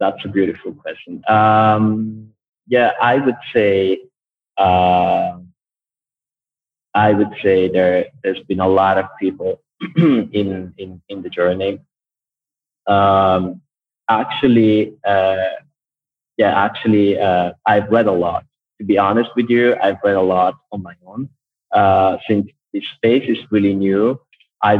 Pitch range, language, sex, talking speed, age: 95-115 Hz, English, male, 135 wpm, 30-49